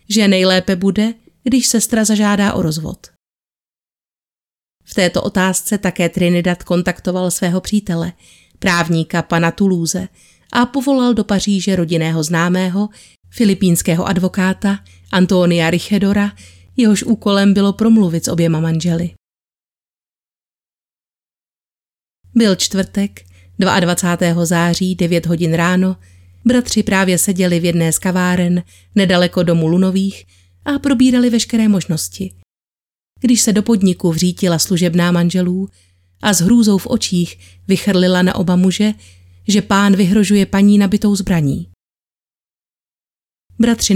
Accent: native